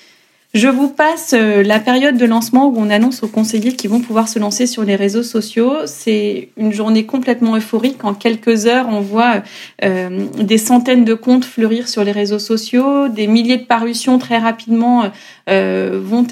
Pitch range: 215-250 Hz